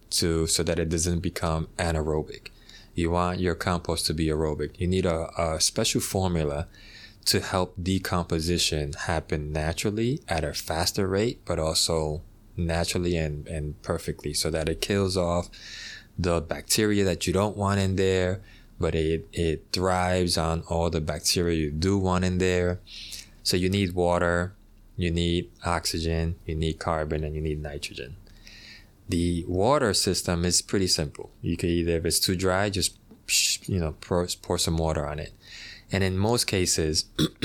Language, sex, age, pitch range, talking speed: English, male, 20-39, 80-95 Hz, 160 wpm